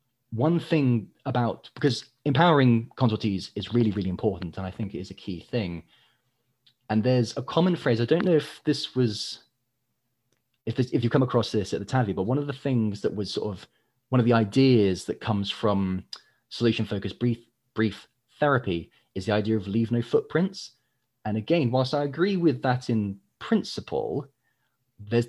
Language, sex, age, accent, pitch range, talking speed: English, male, 30-49, British, 105-125 Hz, 180 wpm